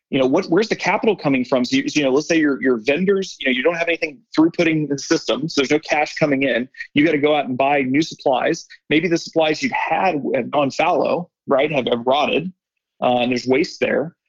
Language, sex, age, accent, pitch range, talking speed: English, male, 30-49, American, 150-185 Hz, 240 wpm